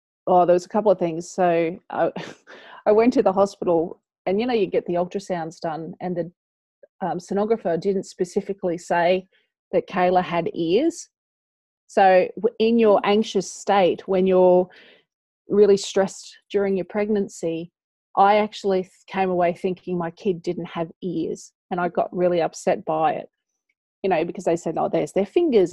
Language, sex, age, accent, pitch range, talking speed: English, female, 30-49, Australian, 180-210 Hz, 165 wpm